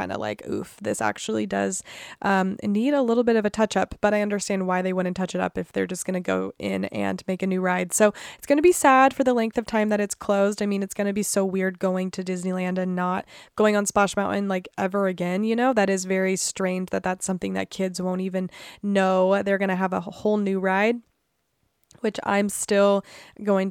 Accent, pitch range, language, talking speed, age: American, 185-225 Hz, English, 235 wpm, 20-39